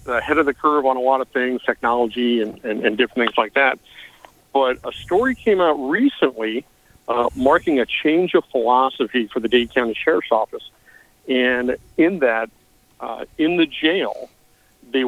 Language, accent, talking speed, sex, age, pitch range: English, American, 170 wpm, male, 60-79, 120-145 Hz